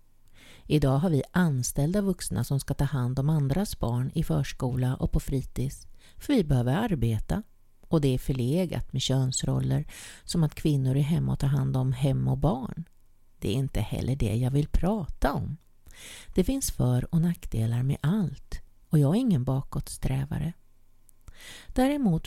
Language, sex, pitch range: Swedish, female, 130-185 Hz